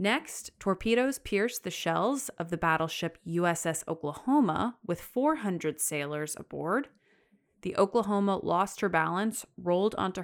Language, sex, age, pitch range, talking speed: English, female, 30-49, 155-210 Hz, 125 wpm